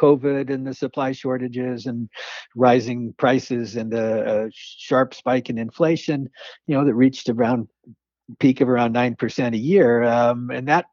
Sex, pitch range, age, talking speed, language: male, 115-140 Hz, 60-79, 155 wpm, English